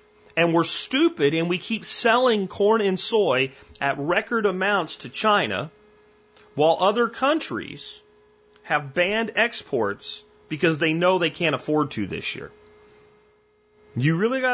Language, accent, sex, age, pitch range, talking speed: English, American, male, 40-59, 130-205 Hz, 135 wpm